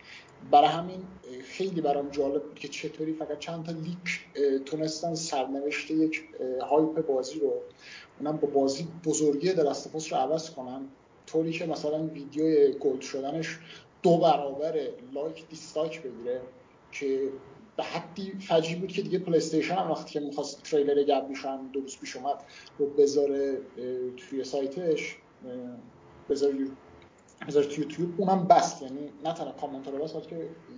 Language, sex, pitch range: Persian, male, 135-170 Hz